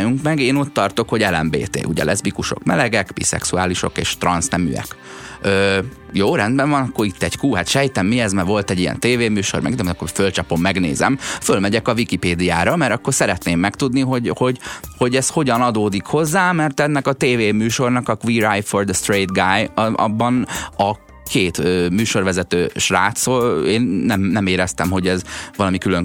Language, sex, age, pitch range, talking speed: Hungarian, male, 30-49, 95-130 Hz, 160 wpm